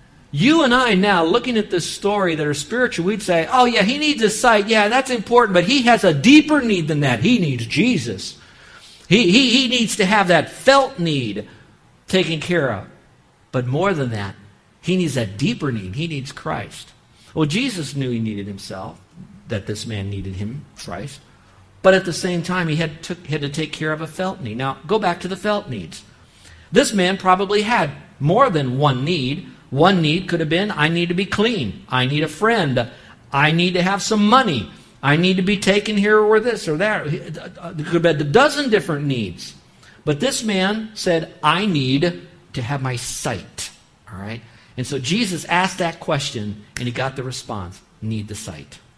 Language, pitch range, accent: English, 135-205 Hz, American